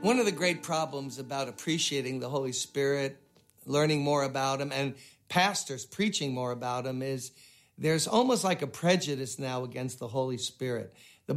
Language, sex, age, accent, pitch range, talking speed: English, male, 50-69, American, 135-180 Hz, 170 wpm